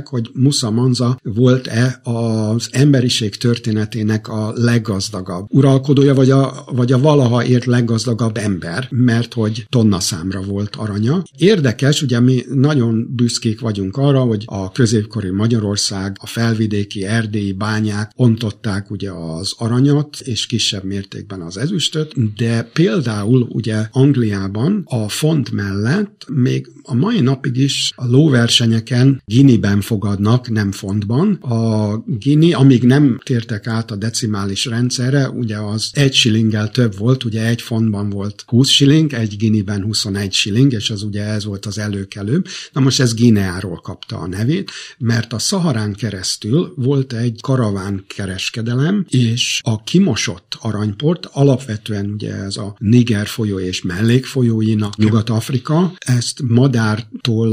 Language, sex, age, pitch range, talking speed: Hungarian, male, 60-79, 105-130 Hz, 135 wpm